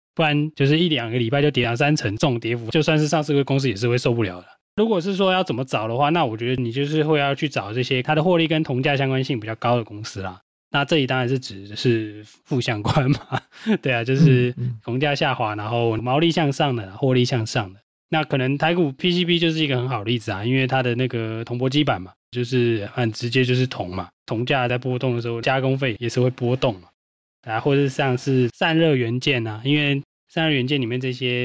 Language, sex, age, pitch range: Chinese, male, 20-39, 120-145 Hz